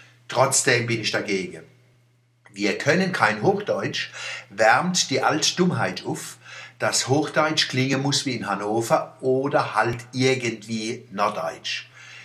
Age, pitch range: 60-79, 110-130 Hz